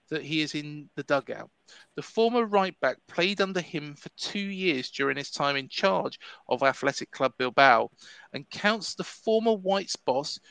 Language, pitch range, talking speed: English, 145-190 Hz, 175 wpm